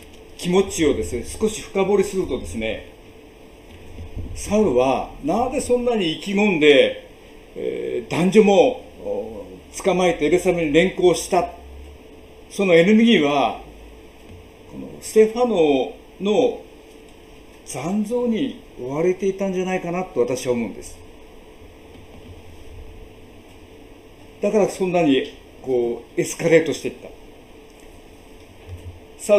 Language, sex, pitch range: Japanese, male, 120-200 Hz